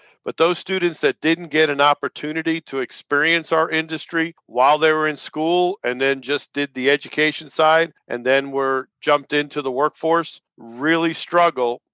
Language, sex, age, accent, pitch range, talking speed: English, male, 50-69, American, 130-150 Hz, 165 wpm